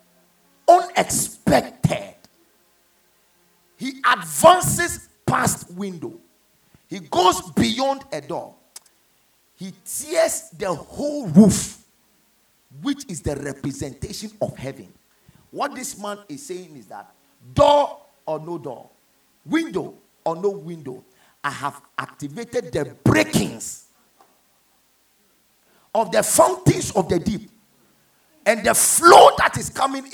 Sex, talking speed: male, 105 wpm